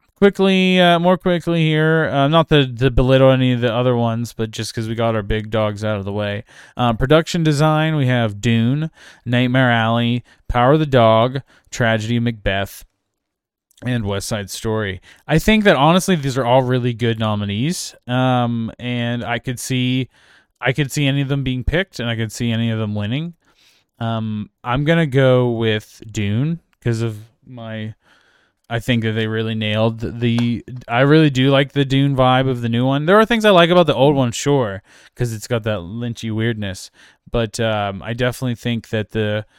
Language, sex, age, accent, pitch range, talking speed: English, male, 20-39, American, 115-140 Hz, 190 wpm